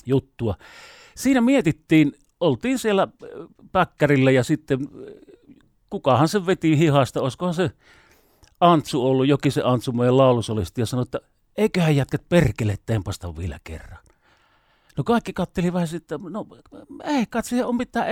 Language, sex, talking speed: Finnish, male, 135 wpm